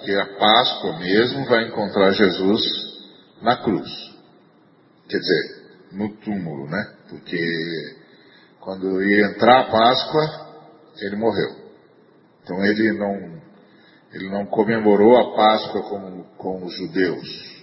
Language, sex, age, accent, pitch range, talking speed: Spanish, male, 40-59, Brazilian, 95-120 Hz, 110 wpm